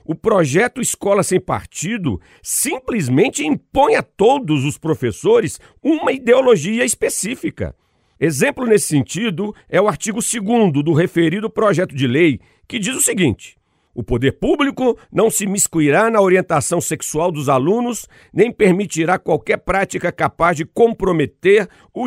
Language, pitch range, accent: Portuguese, 155-225 Hz, Brazilian